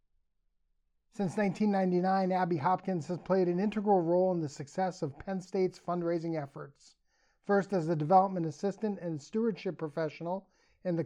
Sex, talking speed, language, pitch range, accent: male, 145 wpm, English, 160-200 Hz, American